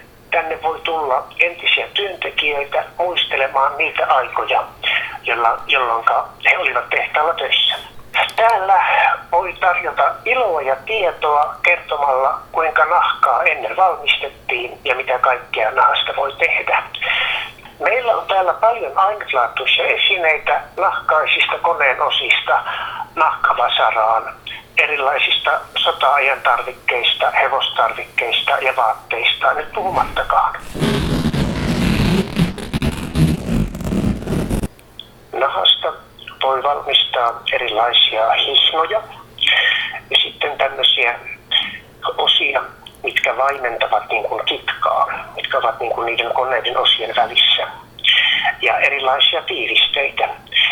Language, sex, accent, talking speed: Finnish, male, native, 85 wpm